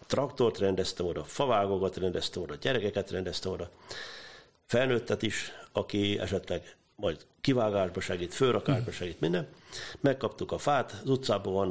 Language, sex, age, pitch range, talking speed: Hungarian, male, 50-69, 95-115 Hz, 125 wpm